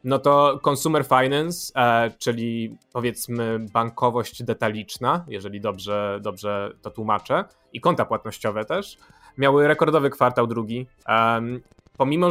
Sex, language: male, Polish